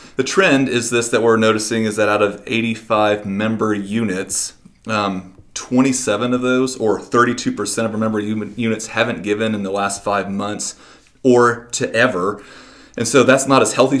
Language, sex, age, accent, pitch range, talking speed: English, male, 30-49, American, 100-115 Hz, 170 wpm